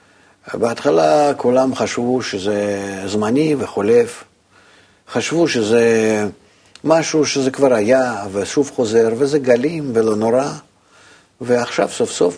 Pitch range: 105-135 Hz